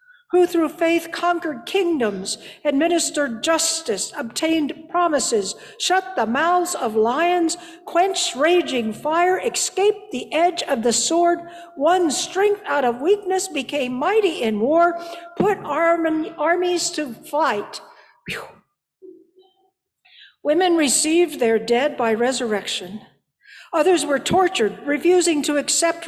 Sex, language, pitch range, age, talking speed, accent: female, English, 255-345 Hz, 60-79, 110 wpm, American